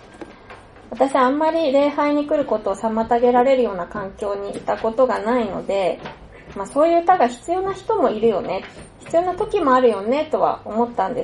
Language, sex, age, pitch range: Japanese, female, 20-39, 225-285 Hz